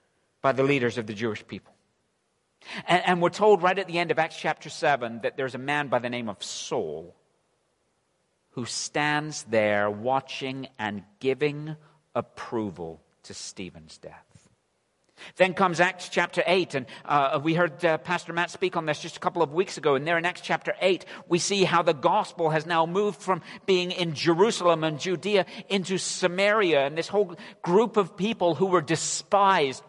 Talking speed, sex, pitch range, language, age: 180 wpm, male, 140-180 Hz, English, 50-69